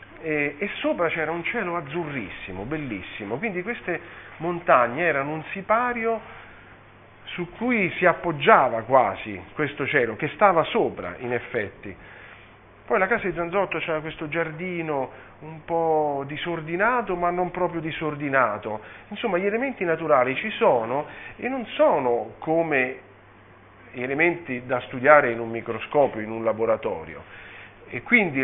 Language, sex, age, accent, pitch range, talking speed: Italian, male, 40-59, native, 110-165 Hz, 130 wpm